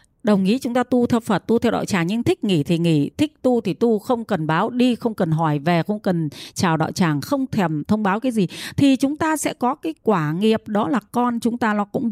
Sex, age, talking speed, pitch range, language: female, 20-39, 270 wpm, 190-255 Hz, Vietnamese